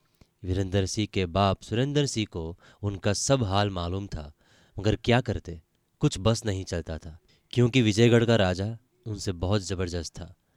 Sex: male